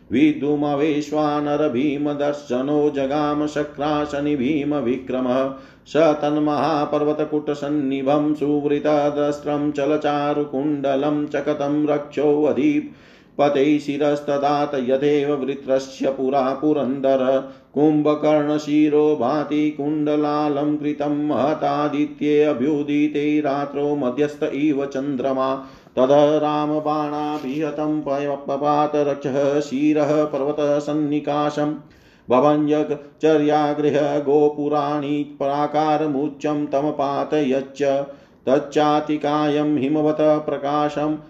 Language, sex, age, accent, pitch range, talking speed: Hindi, male, 40-59, native, 140-150 Hz, 55 wpm